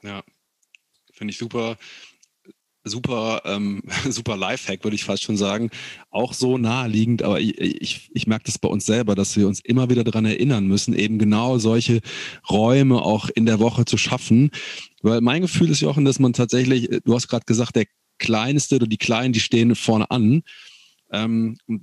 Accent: German